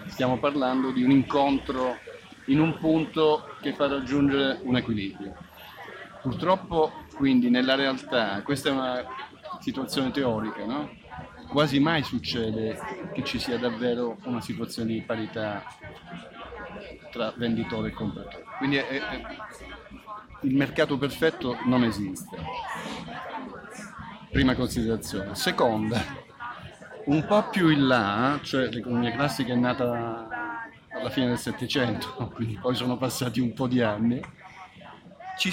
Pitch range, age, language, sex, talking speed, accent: 120-150 Hz, 40-59, Italian, male, 125 wpm, native